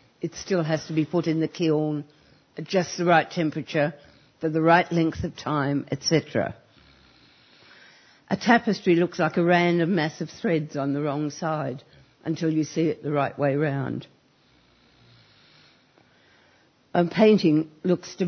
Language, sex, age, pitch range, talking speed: English, female, 60-79, 150-175 Hz, 150 wpm